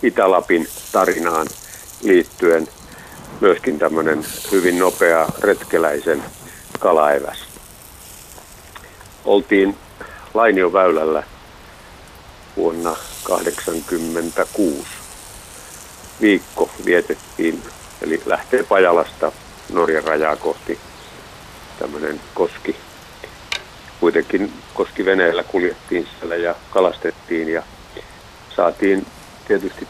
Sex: male